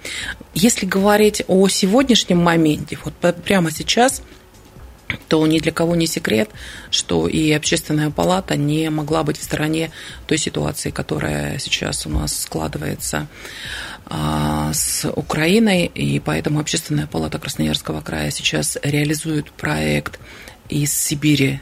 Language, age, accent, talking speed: Russian, 30-49, native, 120 wpm